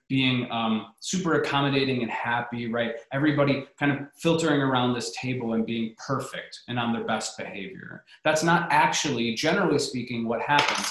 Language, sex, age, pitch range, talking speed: English, male, 20-39, 120-150 Hz, 160 wpm